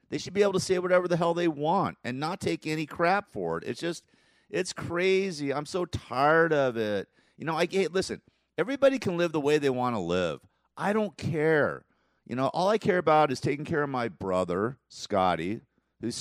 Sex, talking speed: male, 205 wpm